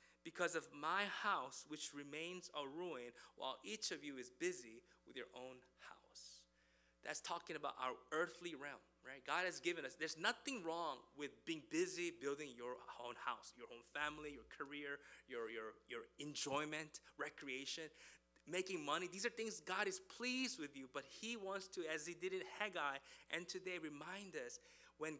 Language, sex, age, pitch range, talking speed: English, male, 20-39, 125-160 Hz, 170 wpm